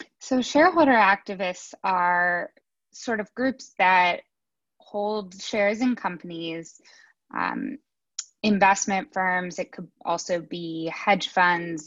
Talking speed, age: 105 wpm, 10-29